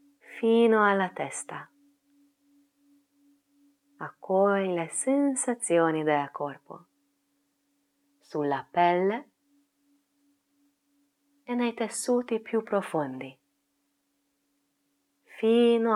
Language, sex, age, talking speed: Italian, female, 20-39, 60 wpm